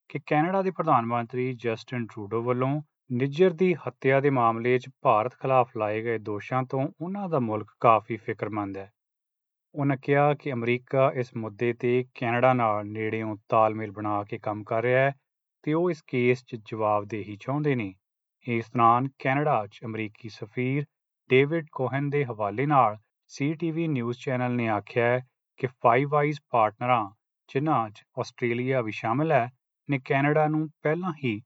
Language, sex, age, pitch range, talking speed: Punjabi, male, 30-49, 110-145 Hz, 155 wpm